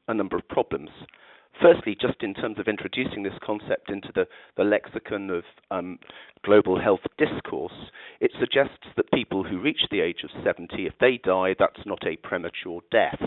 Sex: male